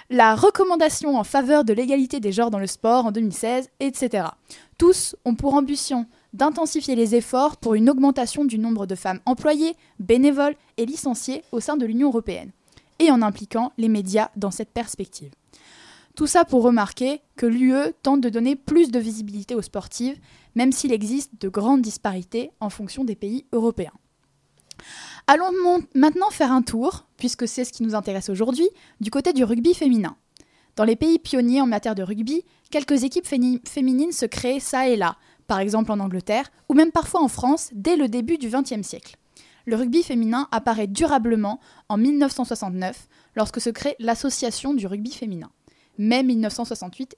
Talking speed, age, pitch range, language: 170 wpm, 10-29, 220-280 Hz, French